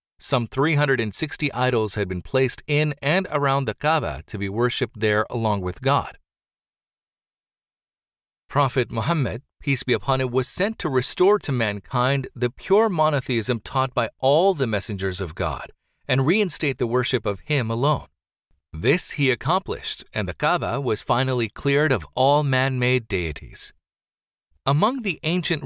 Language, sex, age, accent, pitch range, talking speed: English, male, 40-59, American, 115-145 Hz, 150 wpm